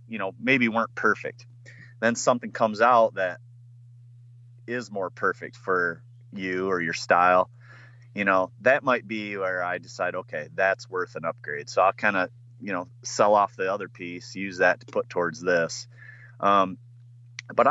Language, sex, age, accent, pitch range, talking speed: English, male, 30-49, American, 95-120 Hz, 170 wpm